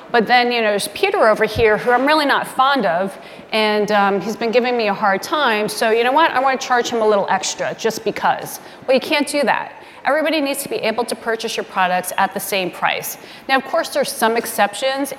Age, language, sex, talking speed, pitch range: 30-49, English, female, 240 wpm, 195-250 Hz